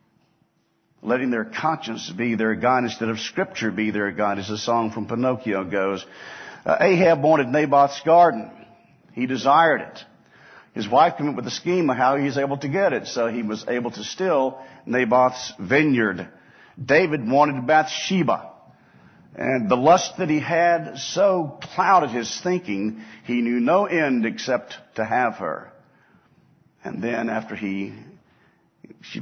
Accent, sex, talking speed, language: American, male, 155 wpm, English